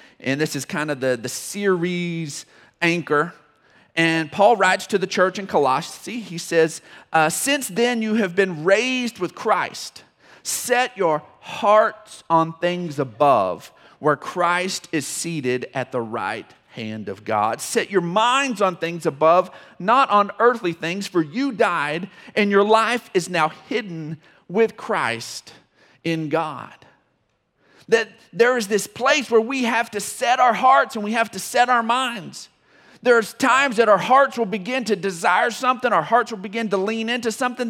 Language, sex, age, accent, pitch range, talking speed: English, male, 40-59, American, 180-250 Hz, 165 wpm